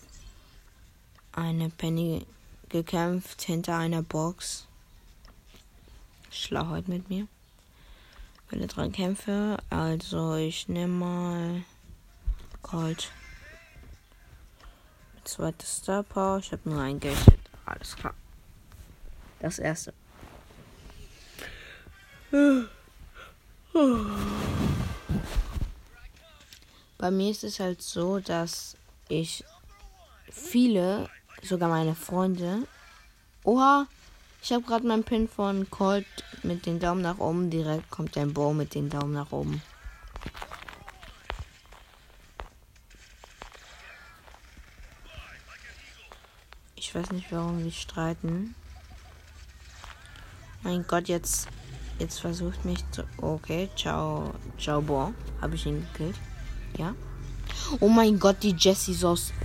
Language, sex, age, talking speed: German, female, 20-39, 95 wpm